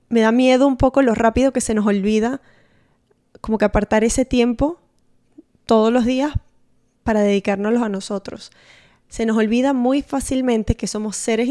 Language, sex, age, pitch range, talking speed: Spanish, female, 10-29, 205-240 Hz, 160 wpm